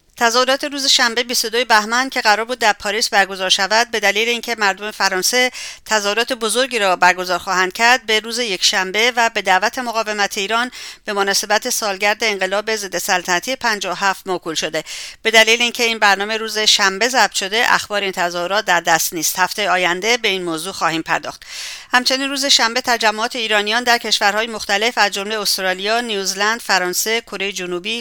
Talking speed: 165 wpm